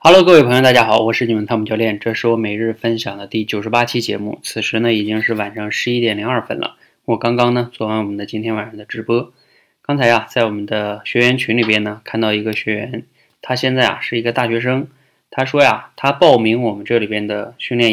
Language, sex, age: Chinese, male, 20-39